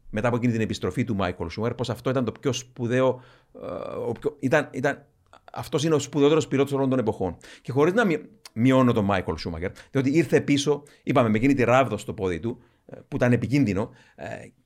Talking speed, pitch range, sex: 190 wpm, 110-135 Hz, male